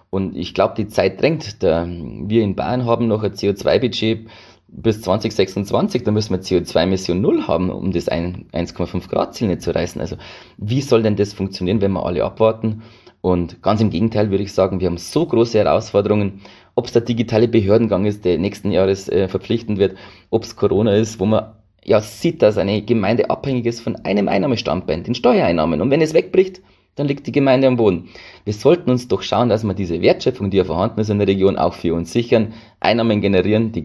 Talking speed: 200 wpm